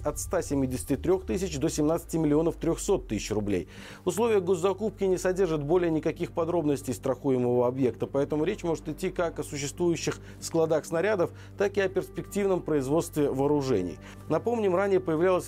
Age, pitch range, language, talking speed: 40-59, 130-180 Hz, Russian, 140 wpm